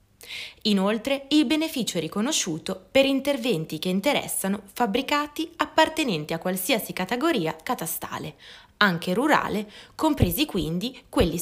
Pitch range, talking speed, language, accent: 170-255 Hz, 105 wpm, Italian, native